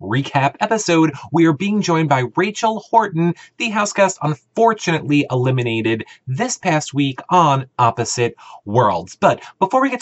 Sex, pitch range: male, 125-195 Hz